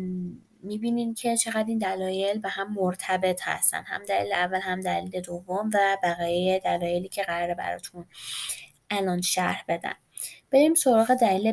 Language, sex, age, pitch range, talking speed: Persian, female, 20-39, 185-245 Hz, 140 wpm